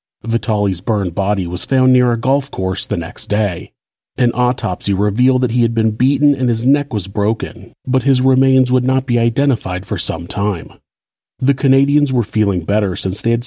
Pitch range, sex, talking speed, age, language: 95-130 Hz, male, 190 wpm, 40-59, English